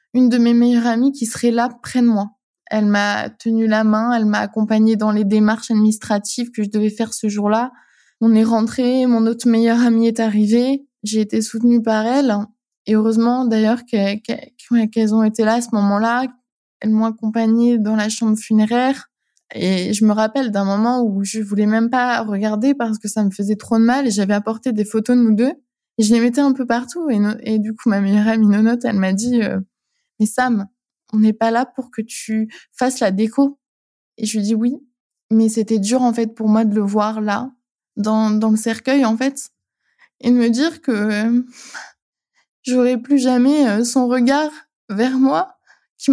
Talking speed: 200 wpm